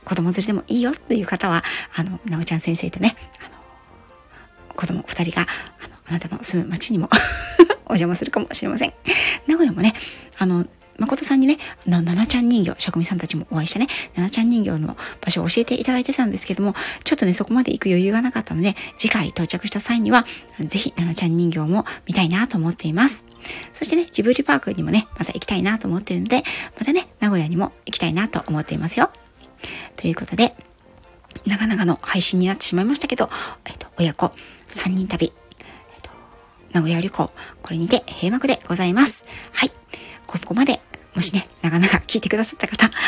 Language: Japanese